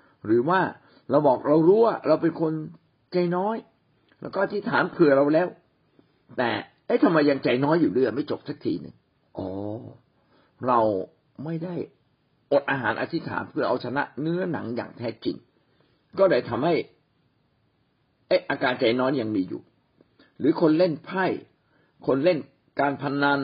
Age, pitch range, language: 60-79, 135-170 Hz, Thai